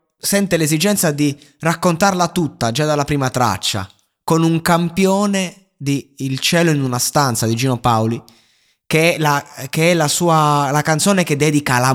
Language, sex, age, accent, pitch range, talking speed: Italian, male, 20-39, native, 120-150 Hz, 165 wpm